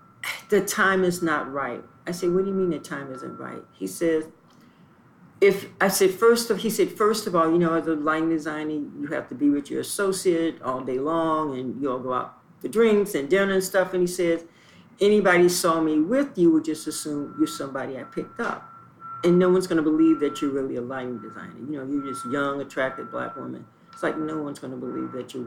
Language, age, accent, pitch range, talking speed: English, 50-69, American, 140-195 Hz, 230 wpm